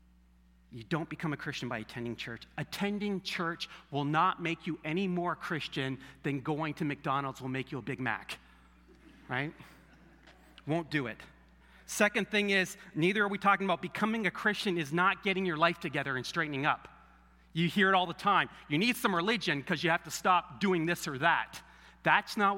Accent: American